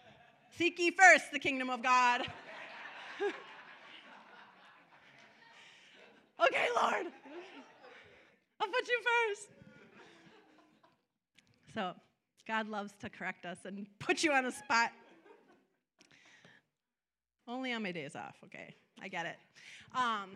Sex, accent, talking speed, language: female, American, 105 wpm, English